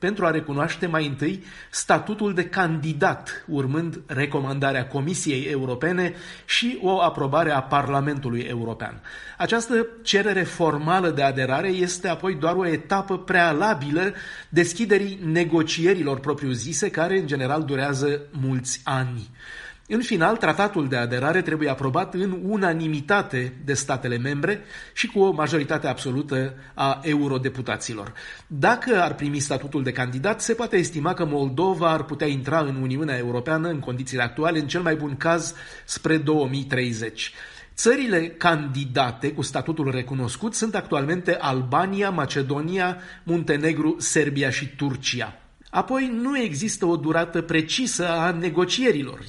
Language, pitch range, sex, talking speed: Romanian, 135-180 Hz, male, 130 wpm